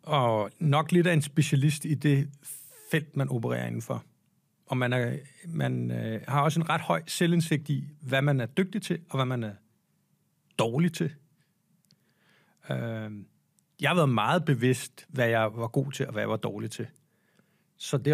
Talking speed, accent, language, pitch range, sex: 180 wpm, native, Danish, 125-160 Hz, male